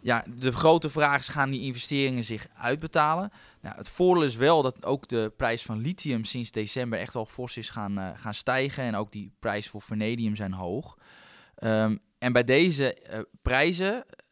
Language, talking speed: Dutch, 190 wpm